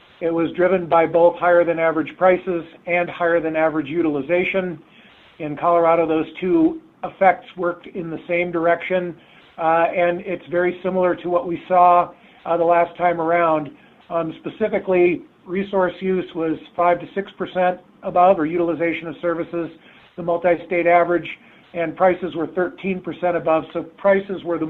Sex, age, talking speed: male, 50-69, 145 wpm